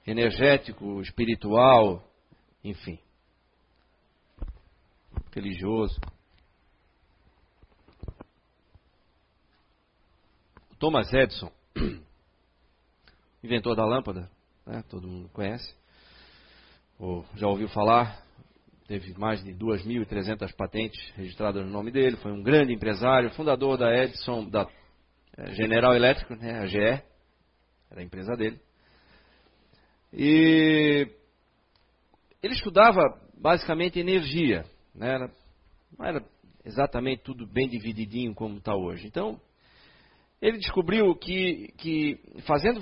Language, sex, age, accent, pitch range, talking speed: Portuguese, male, 40-59, Brazilian, 90-135 Hz, 90 wpm